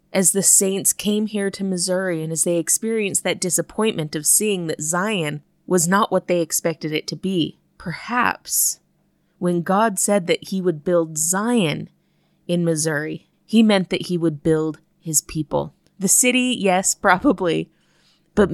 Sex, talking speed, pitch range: female, 160 wpm, 160-195 Hz